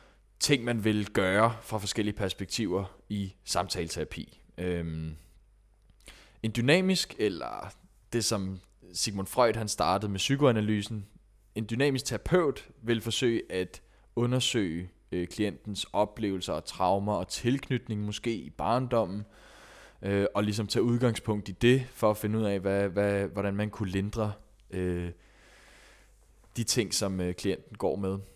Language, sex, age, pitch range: Danish, male, 20-39, 100-120 Hz